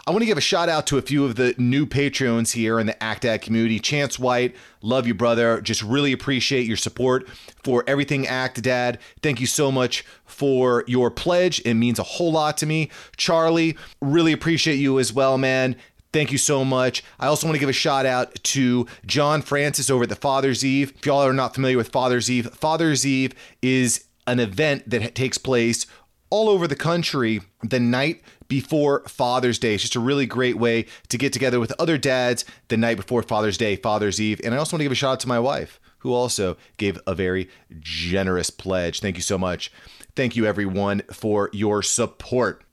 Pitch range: 115-135 Hz